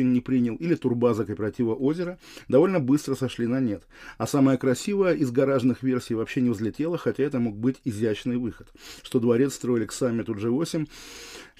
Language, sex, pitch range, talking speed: Russian, male, 115-135 Hz, 170 wpm